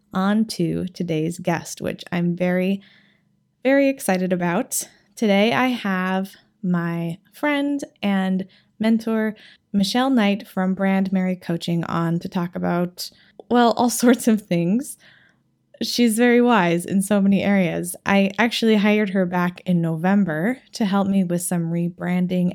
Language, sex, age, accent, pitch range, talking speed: English, female, 20-39, American, 175-210 Hz, 140 wpm